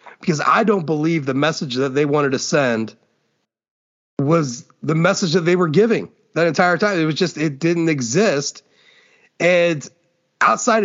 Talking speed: 160 wpm